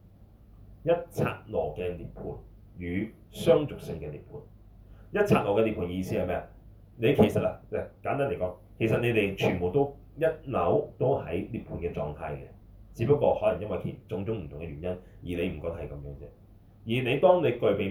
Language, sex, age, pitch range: Chinese, male, 30-49, 90-110 Hz